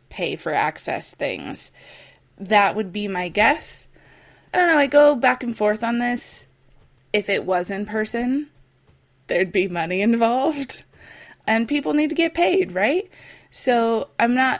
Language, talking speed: English, 155 wpm